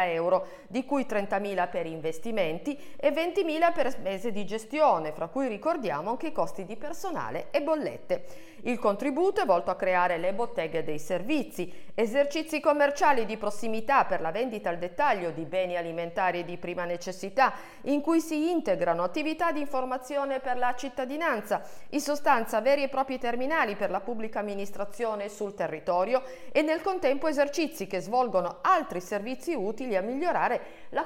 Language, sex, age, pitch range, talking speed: Italian, female, 50-69, 185-290 Hz, 155 wpm